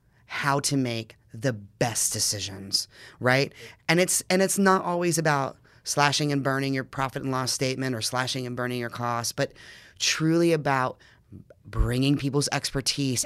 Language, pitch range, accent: English, 120-150 Hz, American